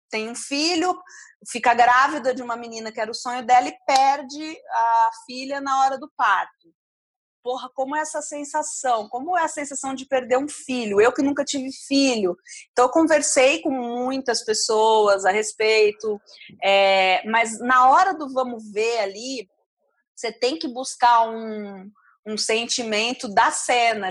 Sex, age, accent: female, 30-49, Brazilian